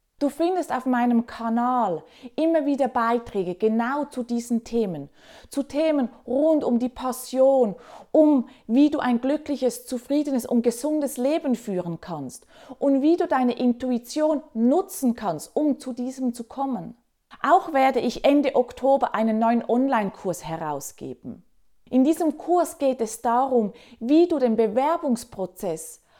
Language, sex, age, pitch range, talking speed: German, female, 30-49, 225-290 Hz, 135 wpm